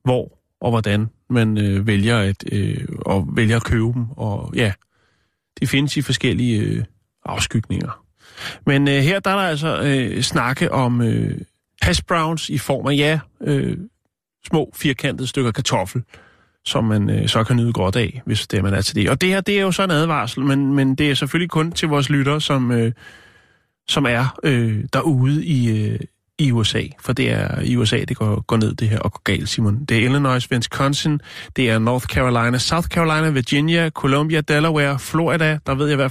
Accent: native